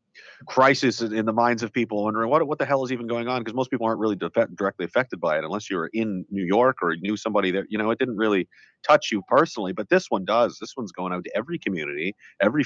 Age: 40-59